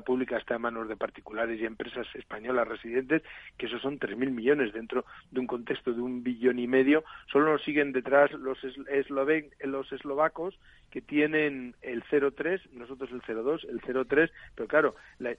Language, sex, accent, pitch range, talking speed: Spanish, male, Spanish, 125-150 Hz, 170 wpm